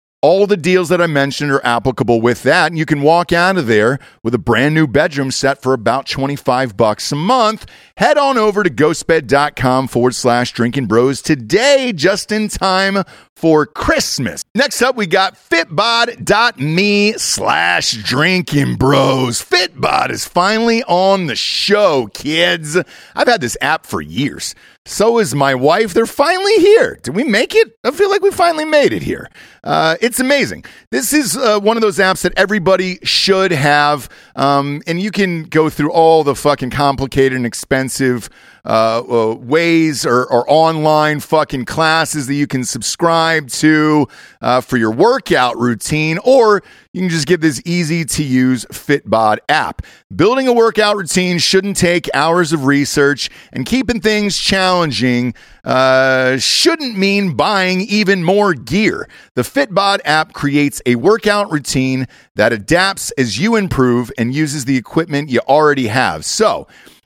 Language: English